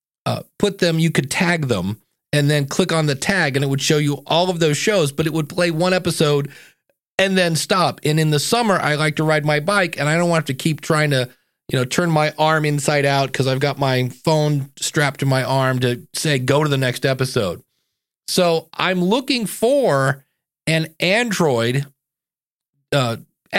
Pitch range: 140-185 Hz